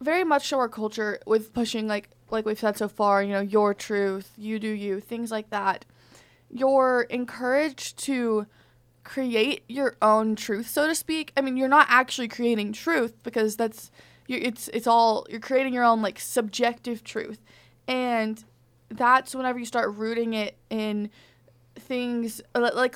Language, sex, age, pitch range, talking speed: English, female, 20-39, 210-245 Hz, 165 wpm